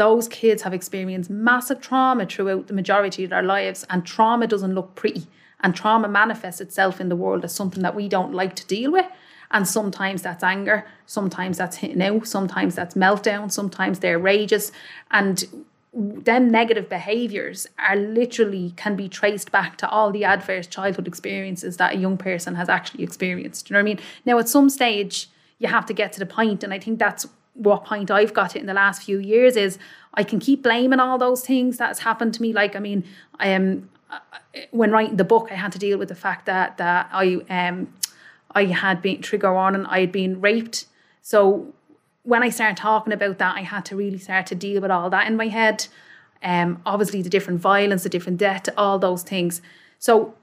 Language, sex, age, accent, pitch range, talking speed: English, female, 30-49, Irish, 190-220 Hz, 210 wpm